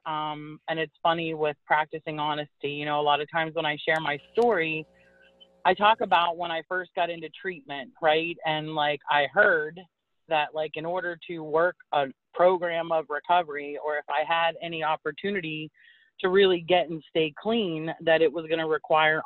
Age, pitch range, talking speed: 30-49, 145-170 Hz, 185 wpm